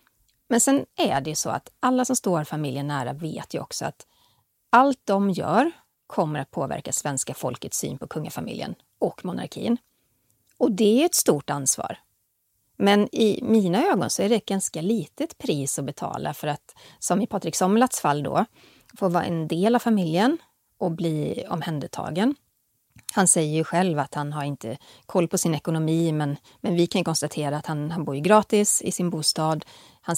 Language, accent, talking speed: Swedish, native, 185 wpm